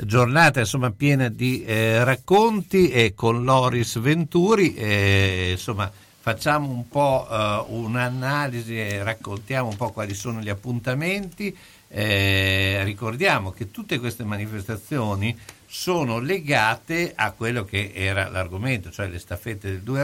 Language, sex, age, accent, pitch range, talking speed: Italian, male, 60-79, native, 95-125 Hz, 130 wpm